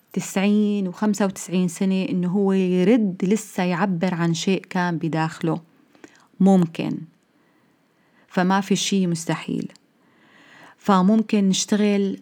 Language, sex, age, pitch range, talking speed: Arabic, female, 30-49, 180-225 Hz, 100 wpm